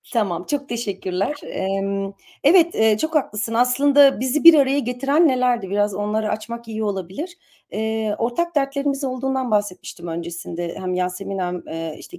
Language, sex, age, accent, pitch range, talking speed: Turkish, female, 40-59, native, 190-275 Hz, 130 wpm